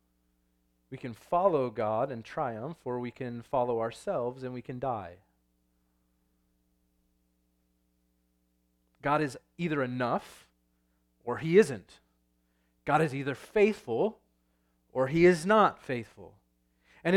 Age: 30-49